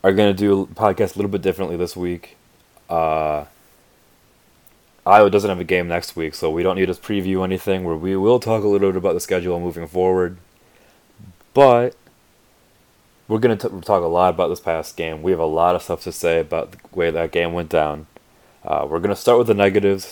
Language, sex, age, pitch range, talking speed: English, male, 20-39, 85-105 Hz, 215 wpm